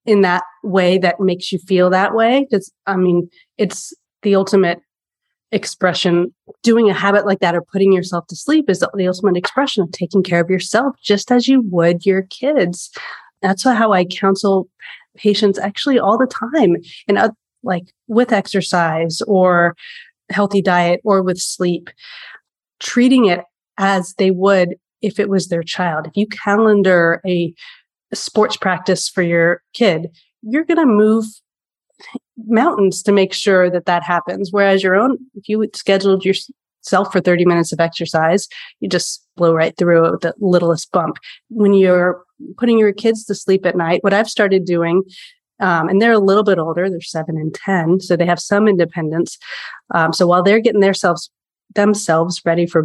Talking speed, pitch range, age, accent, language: 165 wpm, 175-210 Hz, 30-49, American, English